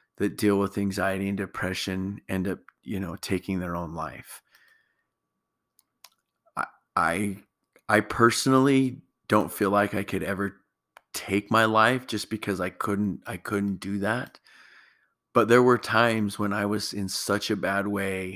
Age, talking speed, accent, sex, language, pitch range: 30-49, 150 wpm, American, male, English, 95-105 Hz